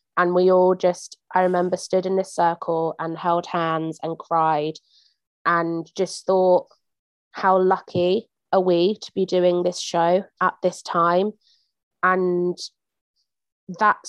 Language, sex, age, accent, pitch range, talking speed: English, female, 20-39, British, 170-195 Hz, 135 wpm